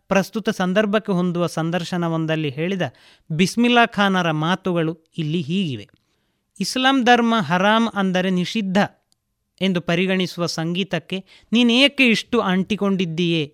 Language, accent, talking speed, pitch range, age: Kannada, native, 100 wpm, 155-205 Hz, 30-49